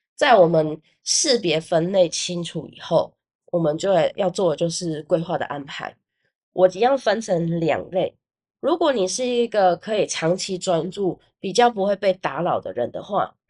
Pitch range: 170-200 Hz